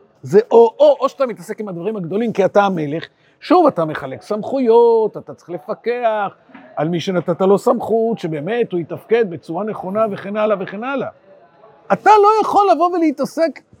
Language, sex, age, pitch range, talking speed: Hebrew, male, 50-69, 175-270 Hz, 170 wpm